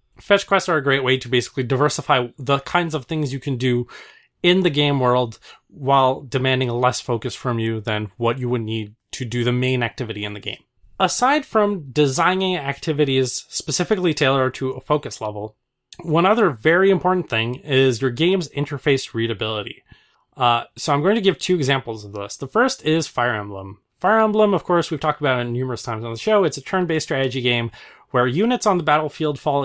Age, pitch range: 30-49, 120-170 Hz